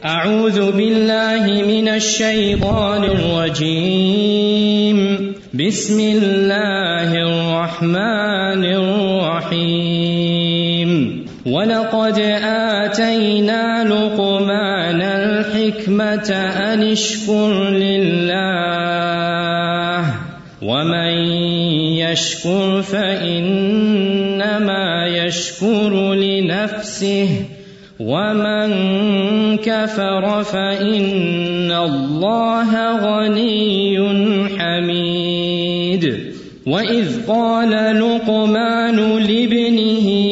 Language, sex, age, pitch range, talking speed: Urdu, male, 20-39, 175-210 Hz, 40 wpm